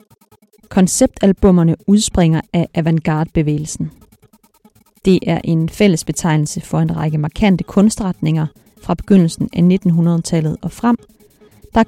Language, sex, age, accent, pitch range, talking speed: Danish, female, 30-49, native, 165-195 Hz, 105 wpm